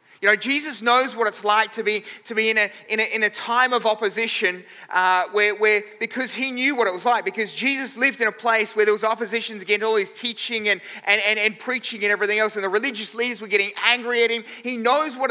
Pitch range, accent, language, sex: 210-240 Hz, Australian, English, male